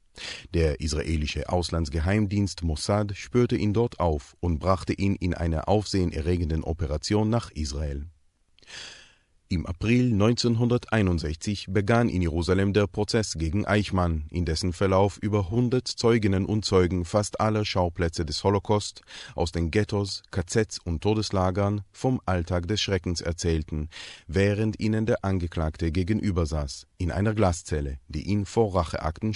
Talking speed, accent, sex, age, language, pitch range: 130 wpm, German, male, 30-49, German, 85-105 Hz